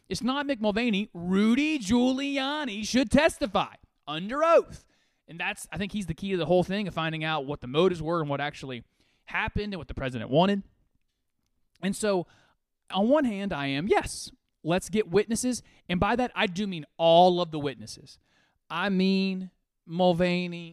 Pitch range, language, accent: 145-195 Hz, English, American